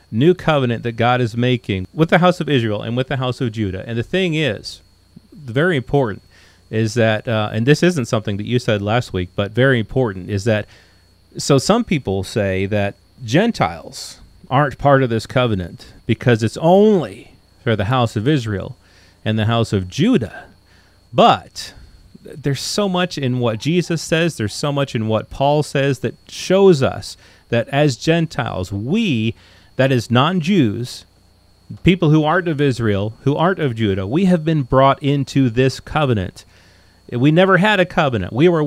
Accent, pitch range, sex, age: American, 105-145 Hz, male, 30-49